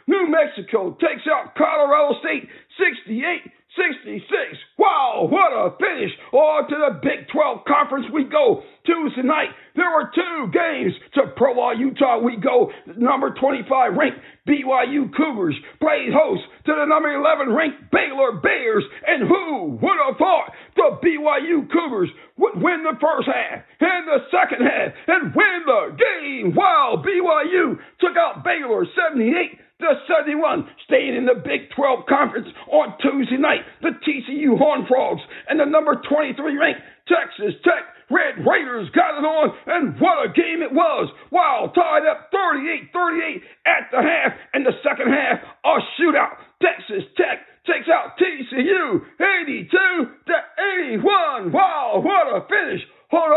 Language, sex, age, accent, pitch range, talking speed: English, male, 50-69, American, 285-350 Hz, 145 wpm